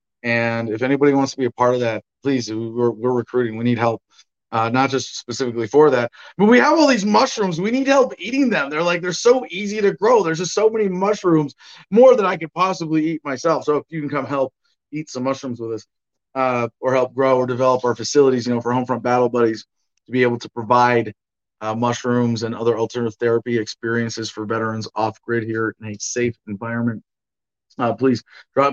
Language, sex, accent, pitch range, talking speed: English, male, American, 120-160 Hz, 210 wpm